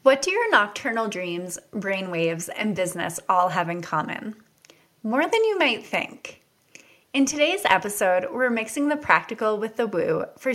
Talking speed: 160 wpm